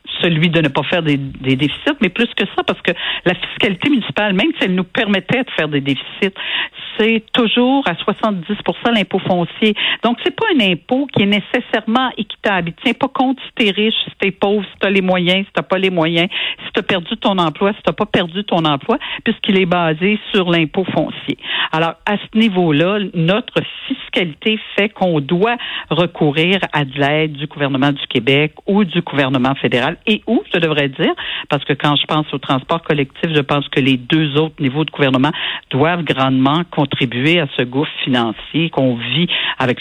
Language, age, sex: French, 60-79, female